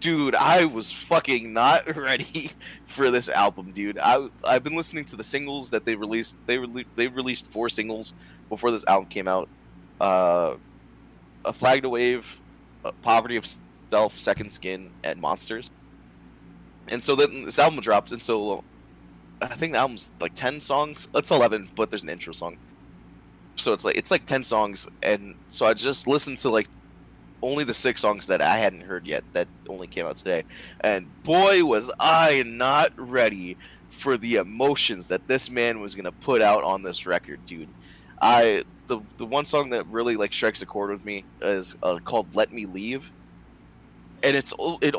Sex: male